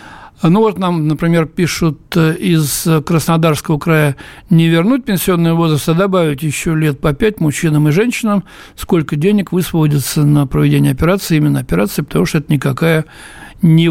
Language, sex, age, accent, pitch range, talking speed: Russian, male, 60-79, native, 150-180 Hz, 145 wpm